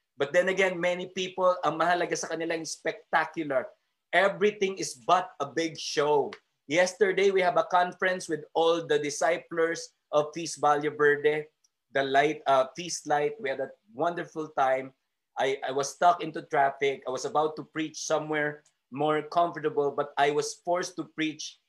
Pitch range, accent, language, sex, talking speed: 150-185 Hz, native, Filipino, male, 165 wpm